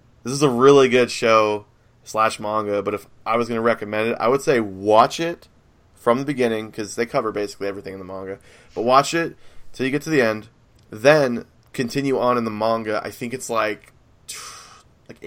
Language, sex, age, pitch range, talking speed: English, male, 20-39, 105-125 Hz, 205 wpm